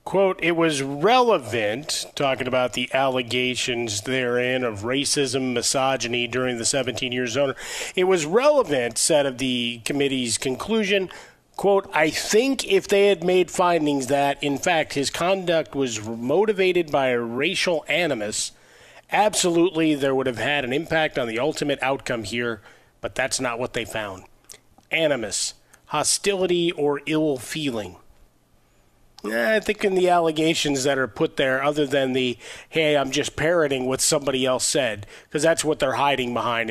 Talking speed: 155 wpm